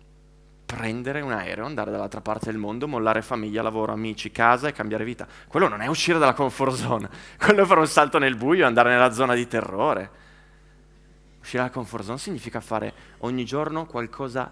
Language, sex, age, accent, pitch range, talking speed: Italian, male, 30-49, native, 110-155 Hz, 180 wpm